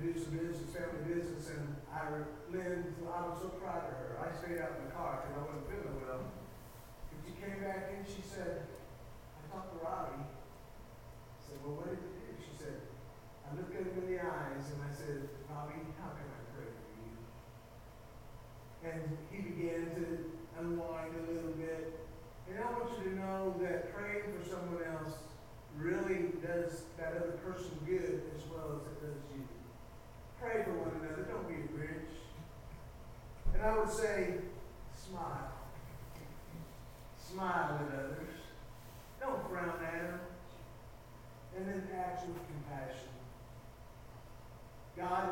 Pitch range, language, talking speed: 130-175 Hz, English, 155 wpm